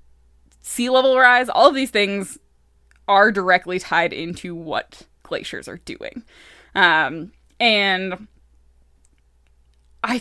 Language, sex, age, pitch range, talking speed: English, female, 20-39, 170-215 Hz, 105 wpm